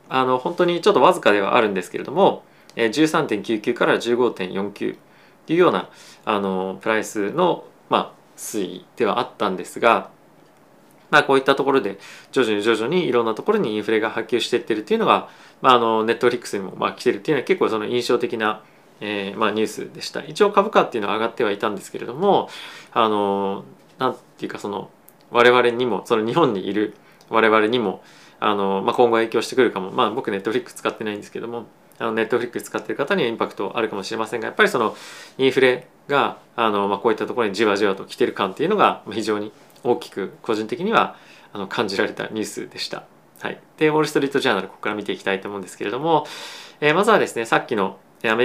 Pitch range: 105-130 Hz